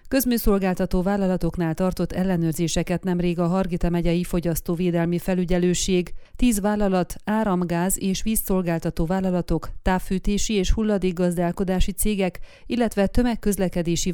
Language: Hungarian